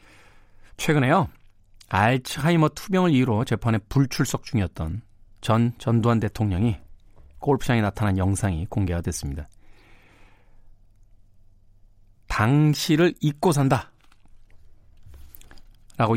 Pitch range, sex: 95-125 Hz, male